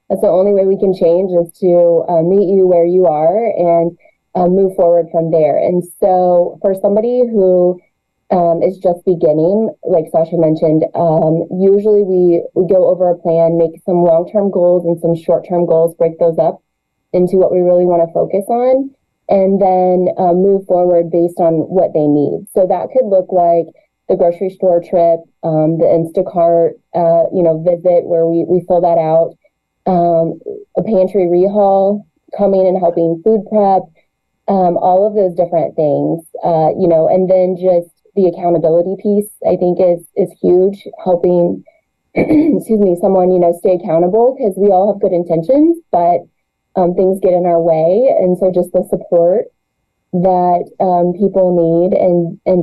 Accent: American